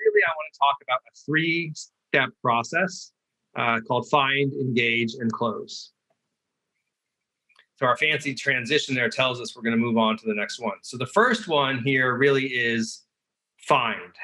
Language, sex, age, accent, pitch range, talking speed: English, male, 30-49, American, 130-185 Hz, 145 wpm